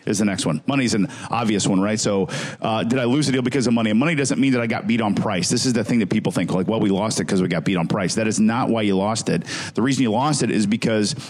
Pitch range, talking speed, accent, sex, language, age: 100-130 Hz, 330 wpm, American, male, English, 50-69